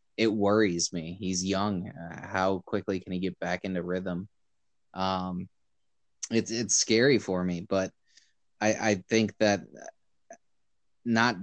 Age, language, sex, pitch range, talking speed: 20-39, English, male, 90-100 Hz, 135 wpm